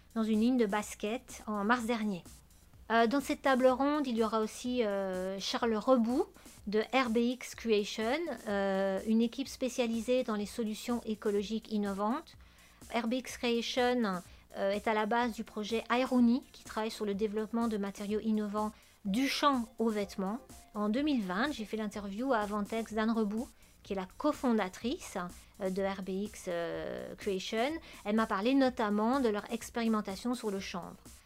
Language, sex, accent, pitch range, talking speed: French, female, French, 205-245 Hz, 155 wpm